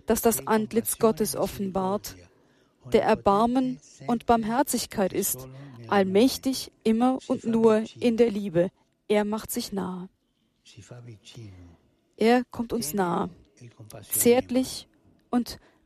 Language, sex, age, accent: German, female, 40-59, German